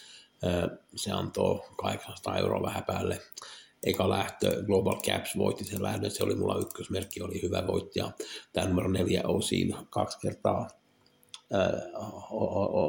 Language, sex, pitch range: Finnish, male, 95-105 Hz